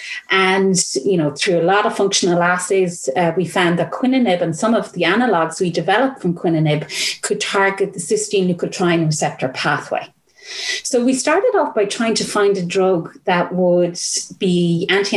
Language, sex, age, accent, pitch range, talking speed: English, female, 30-49, Irish, 170-215 Hz, 175 wpm